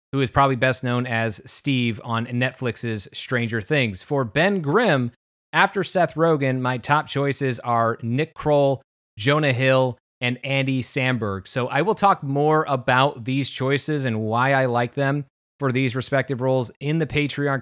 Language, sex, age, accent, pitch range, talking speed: English, male, 30-49, American, 120-140 Hz, 165 wpm